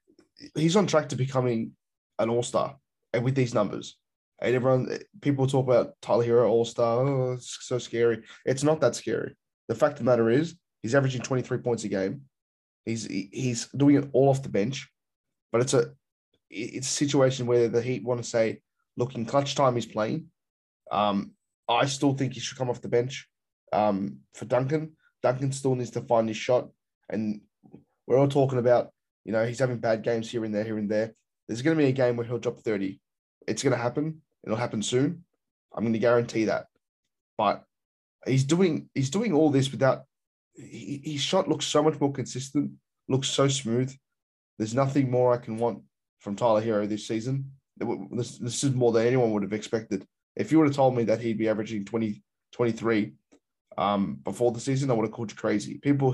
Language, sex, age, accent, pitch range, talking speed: English, male, 10-29, Australian, 110-135 Hz, 195 wpm